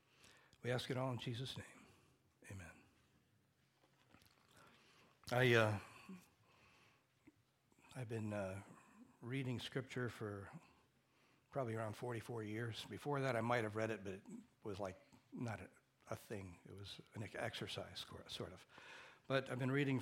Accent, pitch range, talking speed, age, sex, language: American, 105-130 Hz, 140 wpm, 60-79, male, English